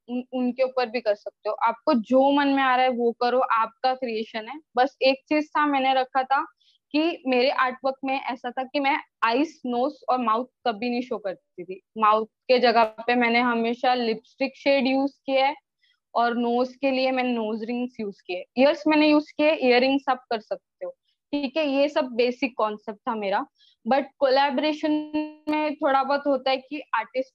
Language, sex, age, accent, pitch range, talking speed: Hindi, female, 20-39, native, 230-275 Hz, 195 wpm